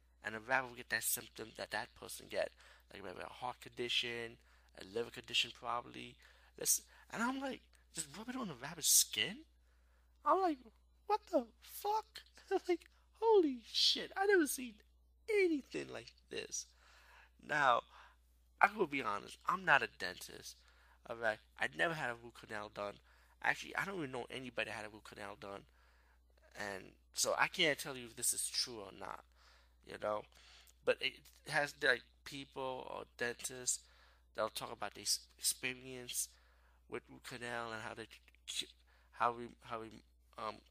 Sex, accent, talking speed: male, American, 160 wpm